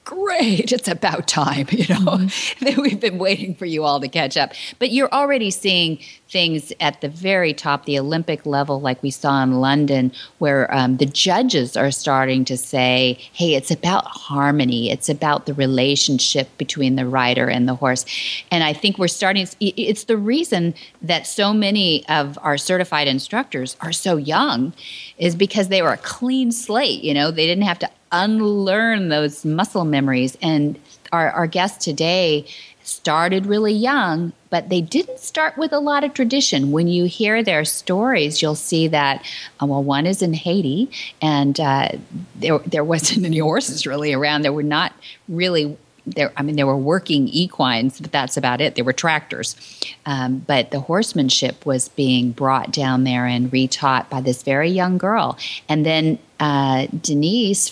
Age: 40-59